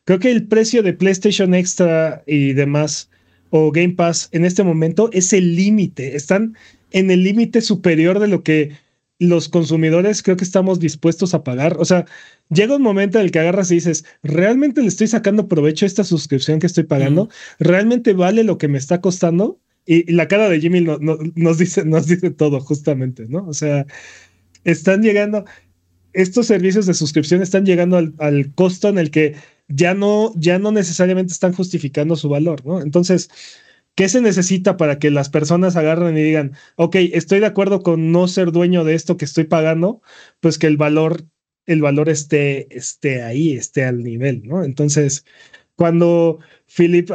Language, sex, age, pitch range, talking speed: Spanish, male, 30-49, 155-190 Hz, 180 wpm